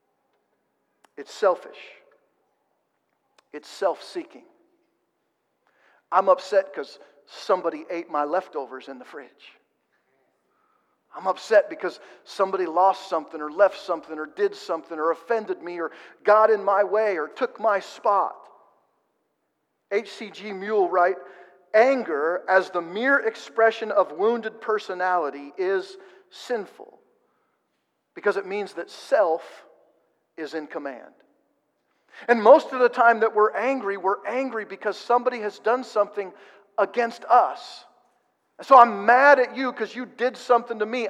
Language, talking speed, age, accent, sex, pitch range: English, 130 wpm, 50-69, American, male, 195-270 Hz